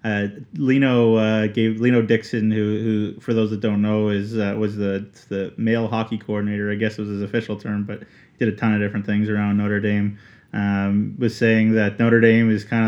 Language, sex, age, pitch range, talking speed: English, male, 20-39, 105-115 Hz, 220 wpm